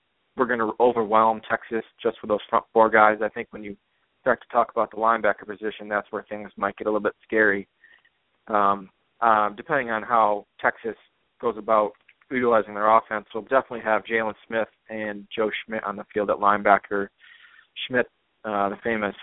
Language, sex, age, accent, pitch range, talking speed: English, male, 20-39, American, 100-110 Hz, 185 wpm